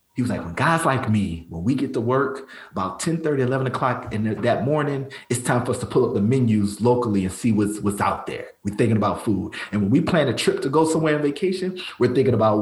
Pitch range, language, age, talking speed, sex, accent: 100-135 Hz, English, 30-49, 245 wpm, male, American